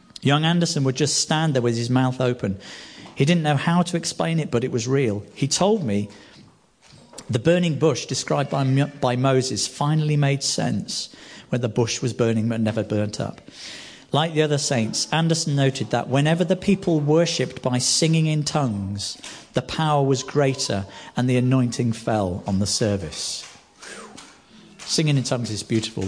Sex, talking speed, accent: male, 170 wpm, British